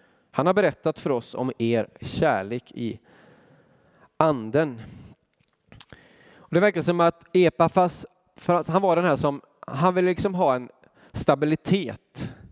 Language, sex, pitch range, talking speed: Swedish, male, 130-170 Hz, 125 wpm